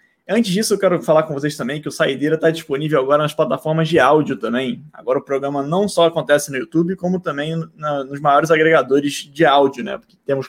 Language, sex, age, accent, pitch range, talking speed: Portuguese, male, 20-39, Brazilian, 145-180 Hz, 215 wpm